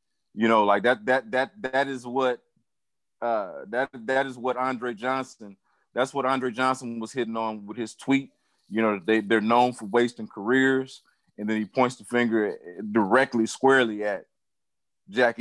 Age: 30-49